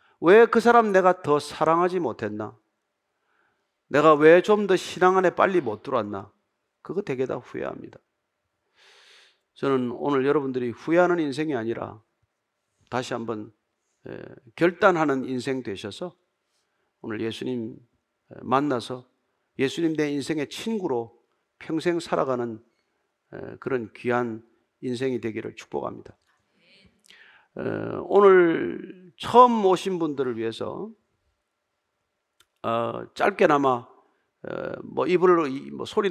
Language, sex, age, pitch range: Korean, male, 40-59, 115-175 Hz